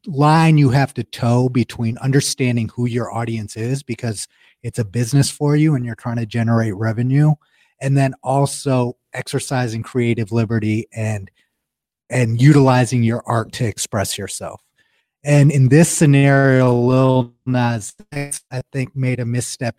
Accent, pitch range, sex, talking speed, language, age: American, 115-140 Hz, male, 145 wpm, English, 30-49